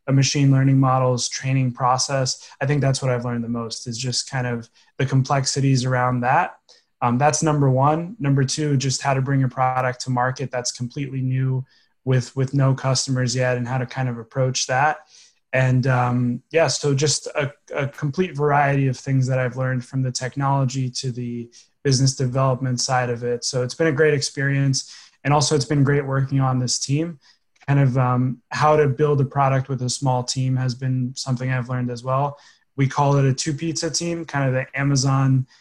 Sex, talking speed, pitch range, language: male, 200 wpm, 130-140 Hz, English